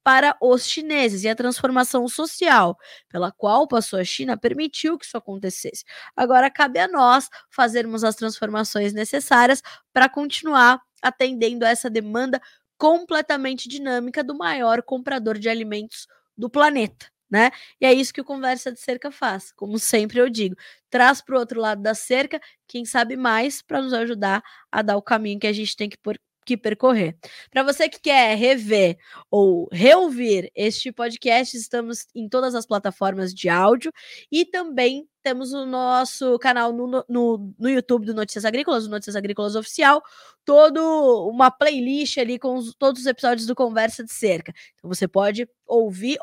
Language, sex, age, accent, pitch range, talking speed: Portuguese, female, 20-39, Brazilian, 220-270 Hz, 165 wpm